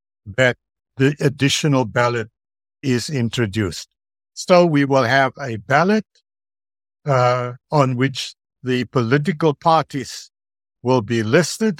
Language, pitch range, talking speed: English, 115-145 Hz, 105 wpm